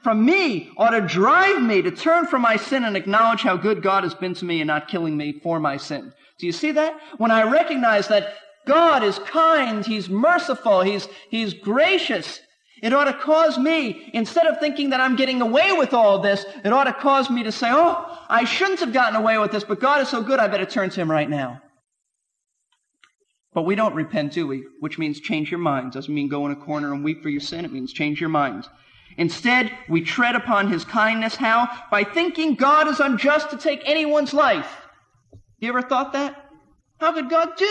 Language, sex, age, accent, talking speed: English, male, 40-59, American, 215 wpm